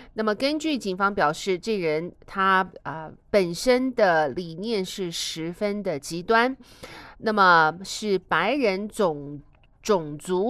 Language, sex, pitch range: Chinese, female, 165-230 Hz